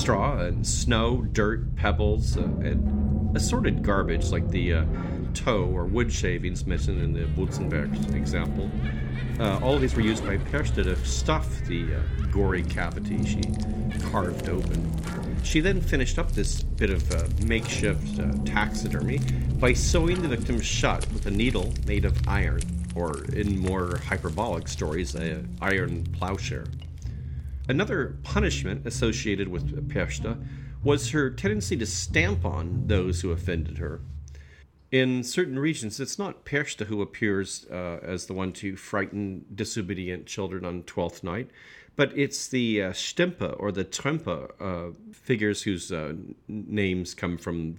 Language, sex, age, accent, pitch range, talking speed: English, male, 40-59, American, 75-105 Hz, 145 wpm